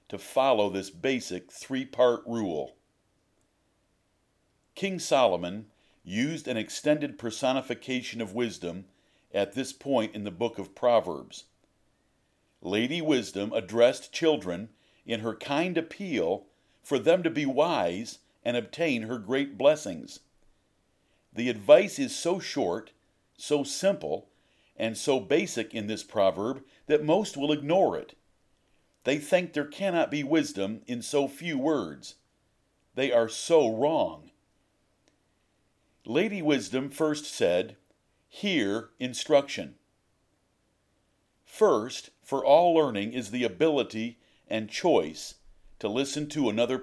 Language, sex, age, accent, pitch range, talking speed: English, male, 50-69, American, 110-150 Hz, 115 wpm